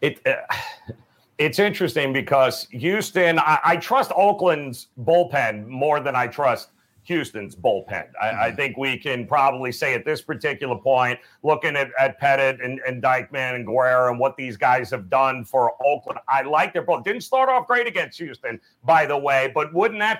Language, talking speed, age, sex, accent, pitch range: English, 180 wpm, 40-59, male, American, 135-185 Hz